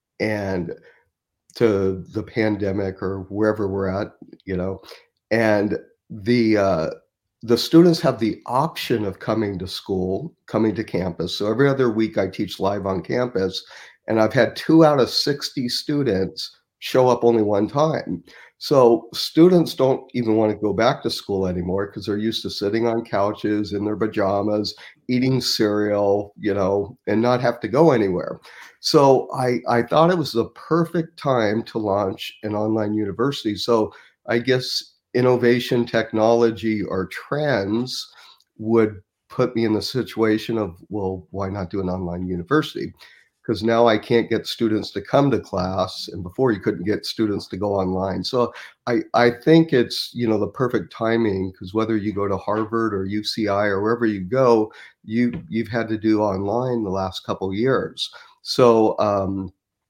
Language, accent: English, American